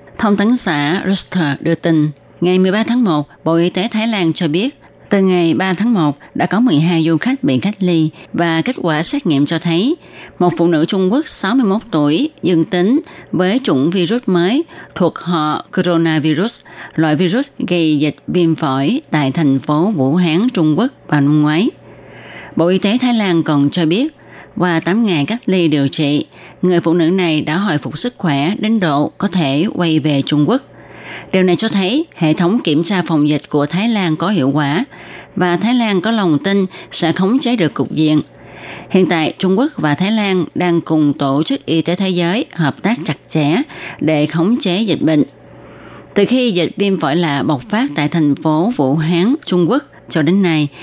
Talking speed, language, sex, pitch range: 200 wpm, Vietnamese, female, 150-195 Hz